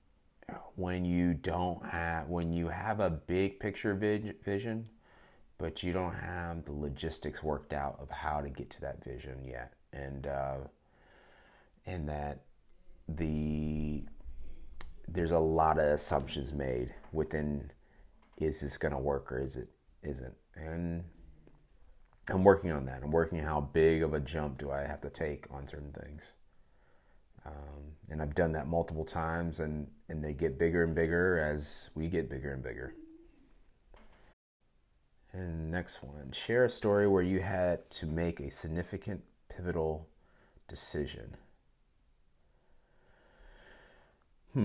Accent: American